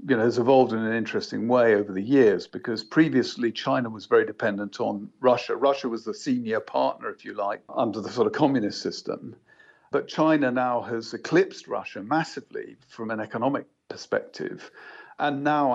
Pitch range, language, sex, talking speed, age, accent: 115-160 Hz, English, male, 175 wpm, 50-69, British